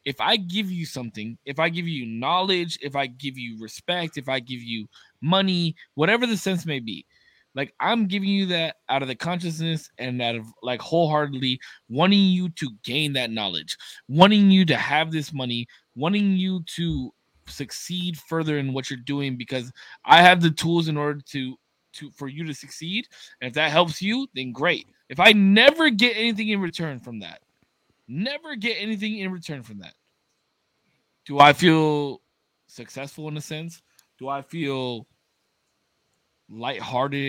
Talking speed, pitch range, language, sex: 170 wpm, 130-185 Hz, English, male